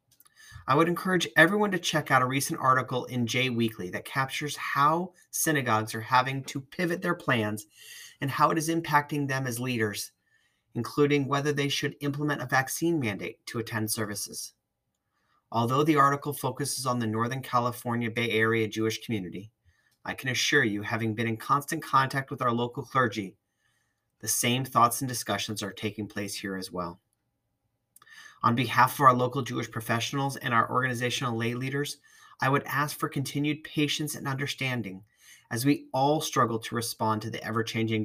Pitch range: 110-140 Hz